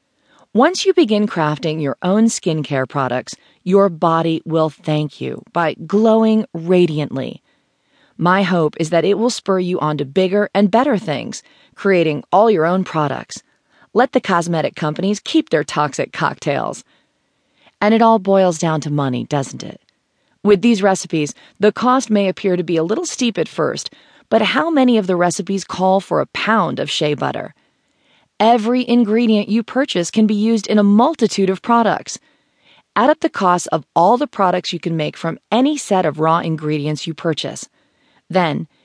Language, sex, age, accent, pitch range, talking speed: English, female, 40-59, American, 160-225 Hz, 170 wpm